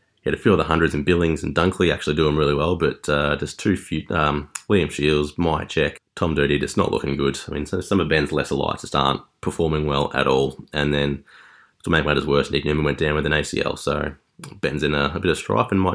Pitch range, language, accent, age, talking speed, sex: 75-90 Hz, English, Australian, 20-39, 250 wpm, male